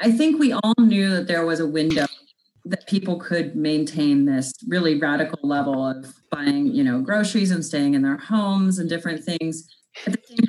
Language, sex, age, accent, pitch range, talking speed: English, female, 30-49, American, 150-225 Hz, 195 wpm